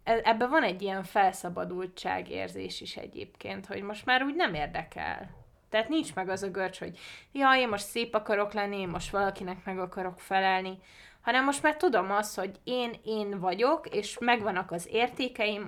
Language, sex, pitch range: Hungarian, female, 185-230 Hz